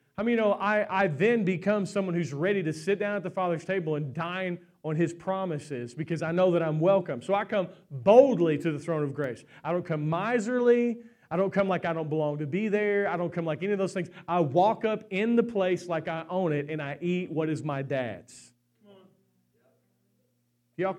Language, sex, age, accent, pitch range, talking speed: English, male, 40-59, American, 155-205 Hz, 225 wpm